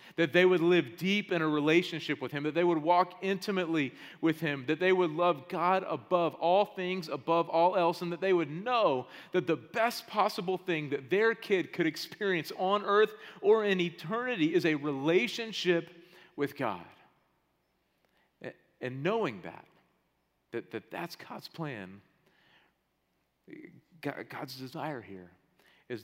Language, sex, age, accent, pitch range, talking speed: English, male, 40-59, American, 115-175 Hz, 150 wpm